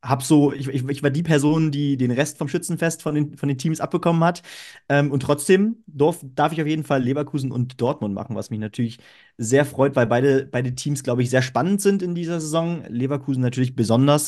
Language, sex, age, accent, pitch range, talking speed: German, male, 30-49, German, 120-150 Hz, 220 wpm